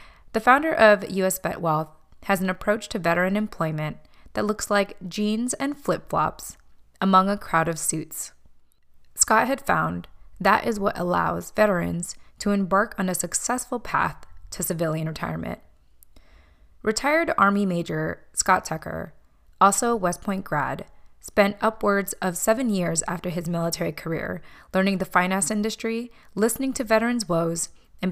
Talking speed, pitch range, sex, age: 145 wpm, 165-210 Hz, female, 20-39